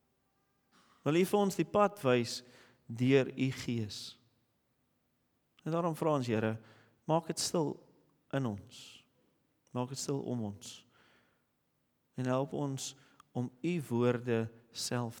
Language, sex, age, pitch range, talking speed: English, male, 40-59, 120-170 Hz, 125 wpm